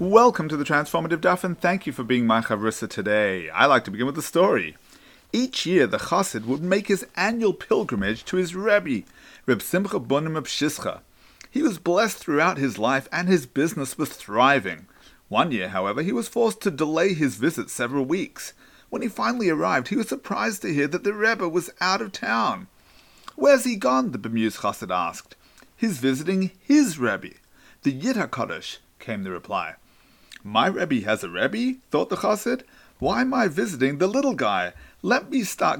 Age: 40-59